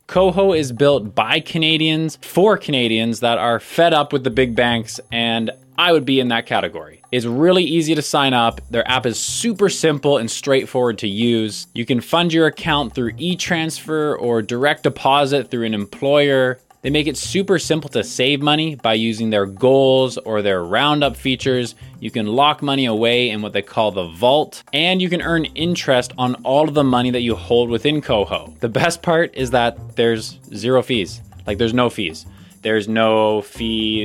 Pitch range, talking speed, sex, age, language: 115-155 Hz, 190 wpm, male, 20-39, English